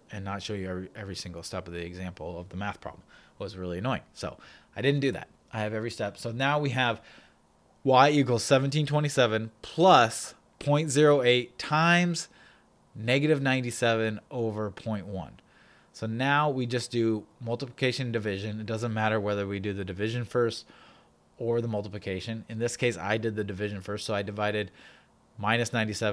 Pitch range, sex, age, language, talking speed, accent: 100-120 Hz, male, 20-39, English, 165 wpm, American